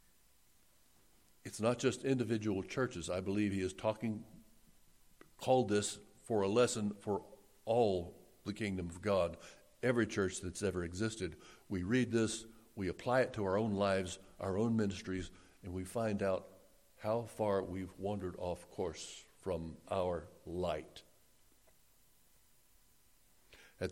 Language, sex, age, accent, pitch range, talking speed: English, male, 60-79, American, 95-115 Hz, 135 wpm